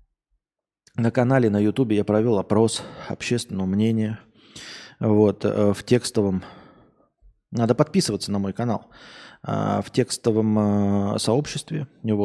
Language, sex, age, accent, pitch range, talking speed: Russian, male, 20-39, native, 110-135 Hz, 100 wpm